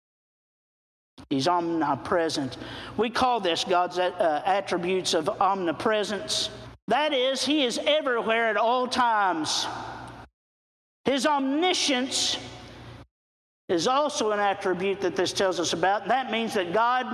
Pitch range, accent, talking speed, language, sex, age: 185-300 Hz, American, 110 wpm, English, male, 50-69